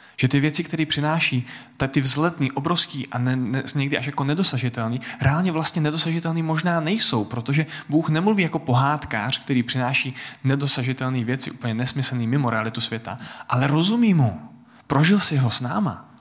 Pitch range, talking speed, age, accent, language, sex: 120-155 Hz, 155 wpm, 20-39, native, Czech, male